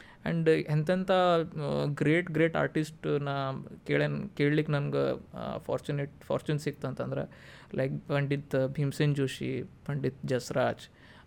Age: 20-39